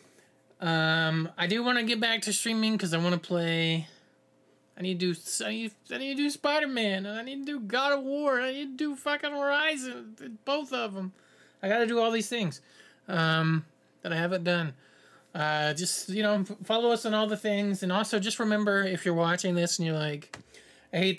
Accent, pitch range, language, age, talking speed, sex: American, 165-225 Hz, English, 20-39, 220 wpm, male